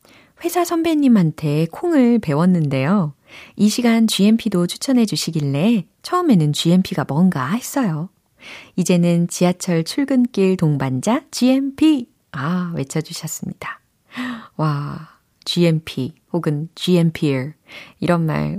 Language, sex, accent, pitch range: Korean, female, native, 150-215 Hz